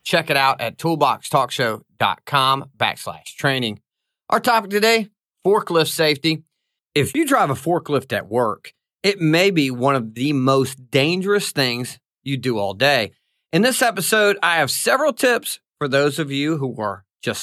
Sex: male